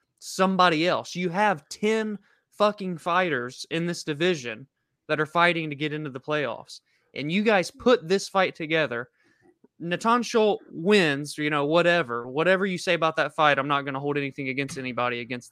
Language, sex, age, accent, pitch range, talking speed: English, male, 20-39, American, 150-210 Hz, 180 wpm